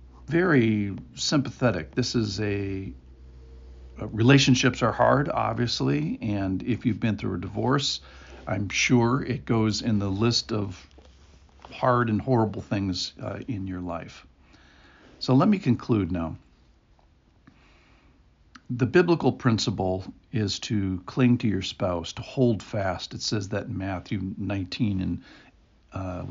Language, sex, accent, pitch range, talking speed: English, male, American, 95-120 Hz, 130 wpm